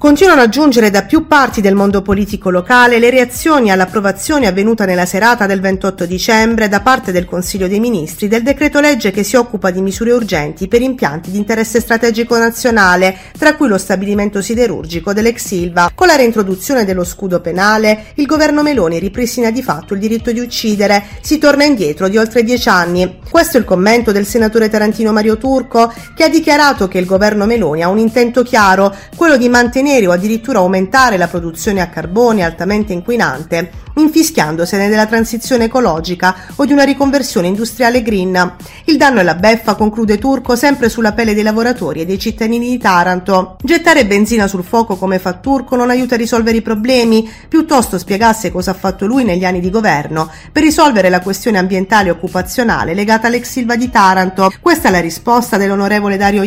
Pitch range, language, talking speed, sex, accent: 190-245 Hz, Italian, 180 wpm, female, native